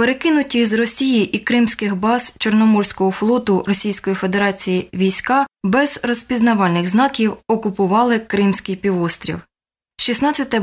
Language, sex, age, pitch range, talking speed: Ukrainian, female, 20-39, 190-245 Hz, 100 wpm